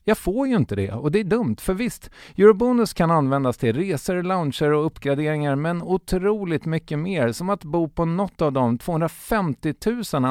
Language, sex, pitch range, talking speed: English, male, 115-170 Hz, 185 wpm